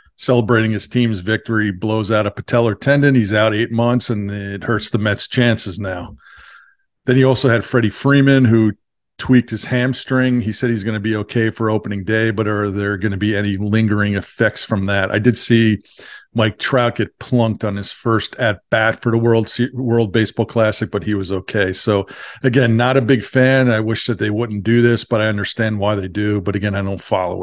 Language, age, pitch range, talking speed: English, 50-69, 105-120 Hz, 210 wpm